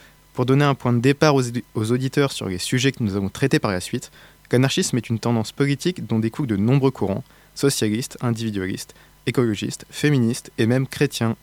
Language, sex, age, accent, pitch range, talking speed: French, male, 20-39, French, 110-140 Hz, 185 wpm